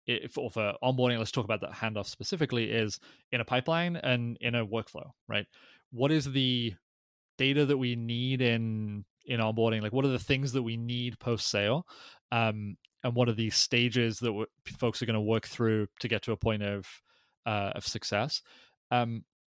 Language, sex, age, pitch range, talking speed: English, male, 20-39, 110-120 Hz, 195 wpm